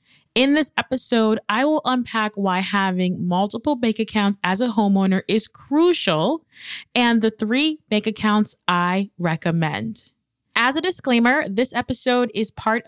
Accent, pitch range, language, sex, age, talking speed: American, 195-255 Hz, English, female, 20-39, 140 wpm